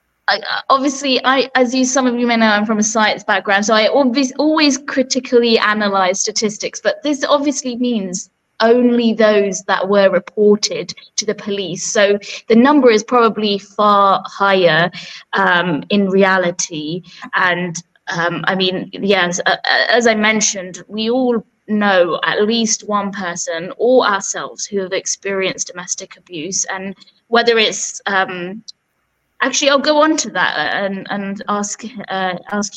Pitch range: 185-220 Hz